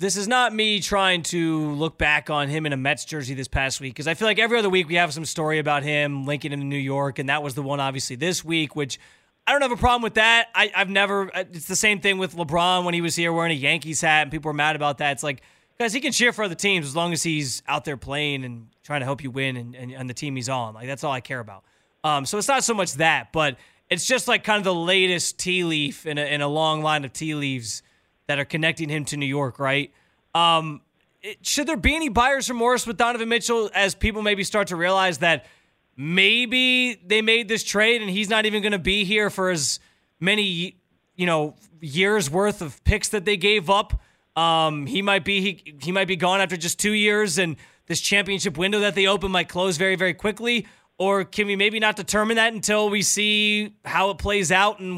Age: 20-39